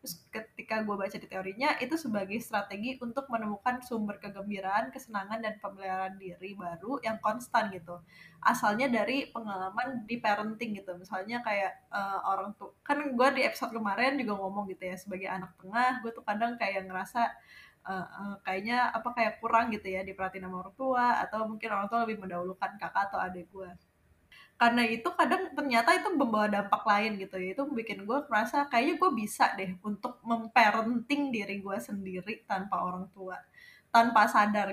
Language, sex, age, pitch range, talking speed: Indonesian, female, 10-29, 200-245 Hz, 170 wpm